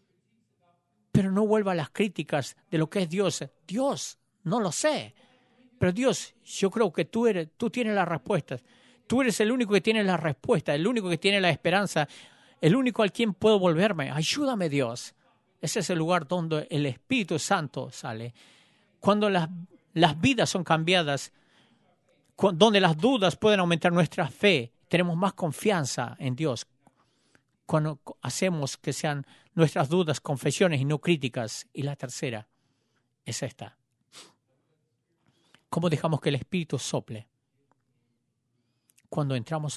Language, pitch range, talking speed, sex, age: English, 135-190 Hz, 145 wpm, male, 50-69